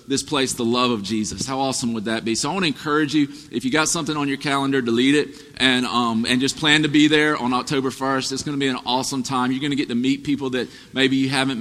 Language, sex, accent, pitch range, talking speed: English, male, American, 130-175 Hz, 285 wpm